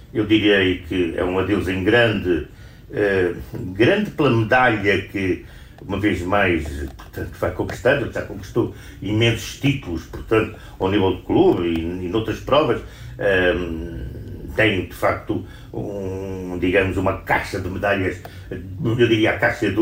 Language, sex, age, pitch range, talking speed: Portuguese, male, 50-69, 95-150 Hz, 145 wpm